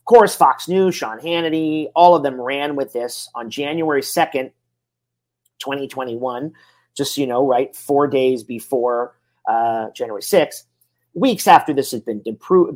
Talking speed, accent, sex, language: 155 wpm, American, male, English